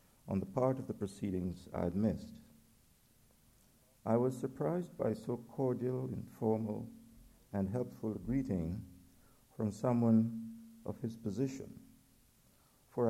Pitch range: 105-130 Hz